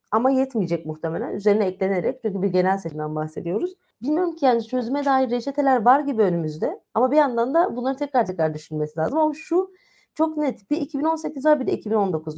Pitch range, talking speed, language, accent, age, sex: 185-265 Hz, 185 wpm, Turkish, native, 30-49, female